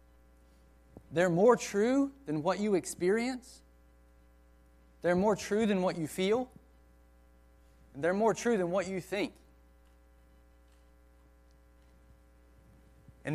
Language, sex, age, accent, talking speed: English, male, 30-49, American, 105 wpm